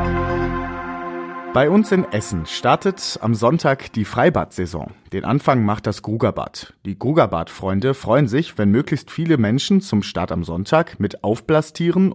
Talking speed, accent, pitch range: 140 wpm, German, 95-125 Hz